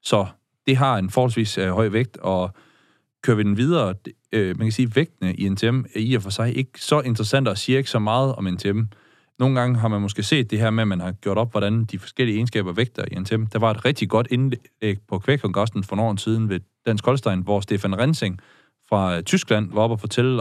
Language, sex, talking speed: Danish, male, 240 wpm